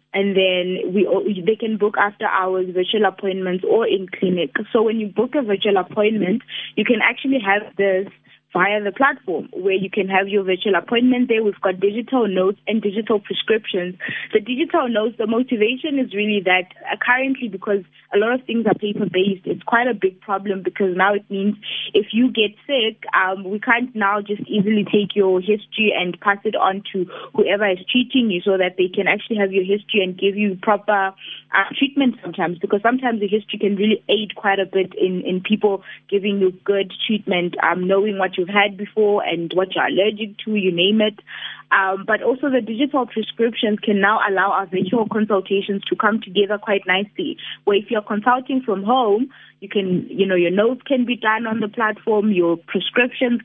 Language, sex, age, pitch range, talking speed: English, female, 20-39, 190-220 Hz, 195 wpm